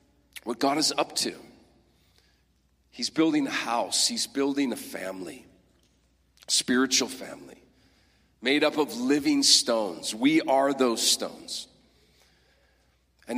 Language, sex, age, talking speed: English, male, 40-59, 115 wpm